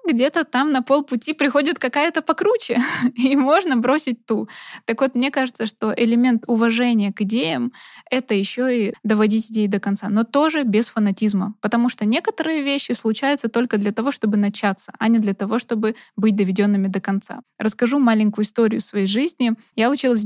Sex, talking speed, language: female, 170 wpm, Russian